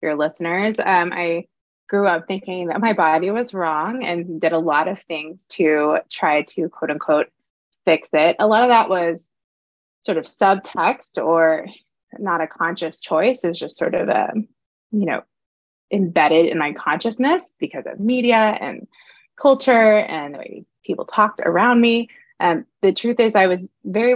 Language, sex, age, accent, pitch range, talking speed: English, female, 20-39, American, 165-215 Hz, 175 wpm